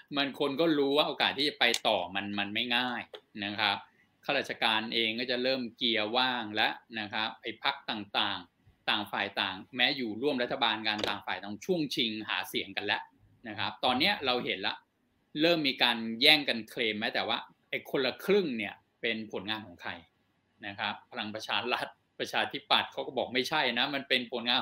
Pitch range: 110-130 Hz